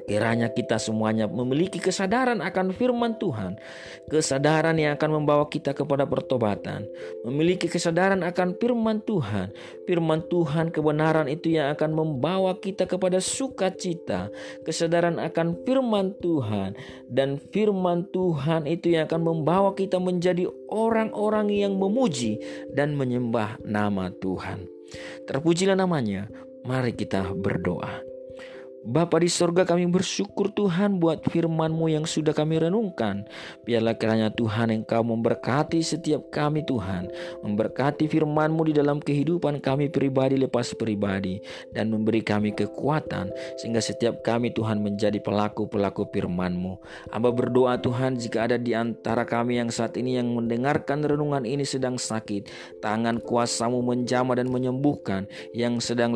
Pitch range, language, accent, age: 110-170 Hz, Indonesian, native, 40-59